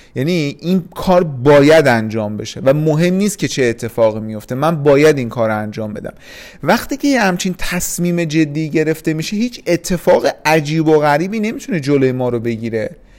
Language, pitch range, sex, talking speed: Persian, 135-180 Hz, male, 170 wpm